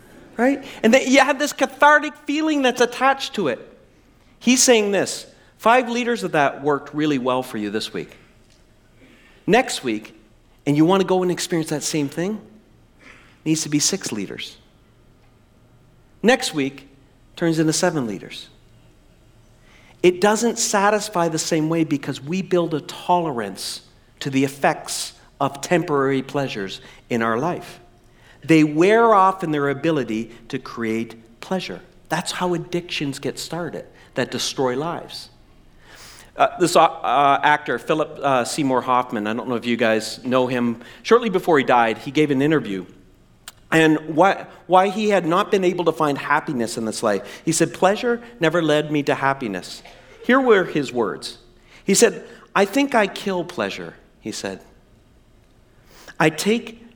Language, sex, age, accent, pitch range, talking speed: English, male, 40-59, American, 125-190 Hz, 155 wpm